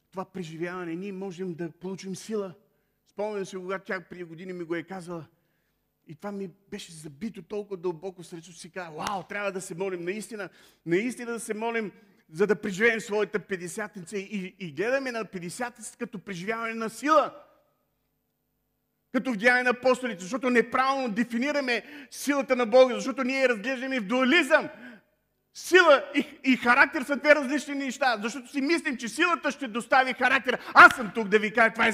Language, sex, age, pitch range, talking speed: Bulgarian, male, 40-59, 205-295 Hz, 175 wpm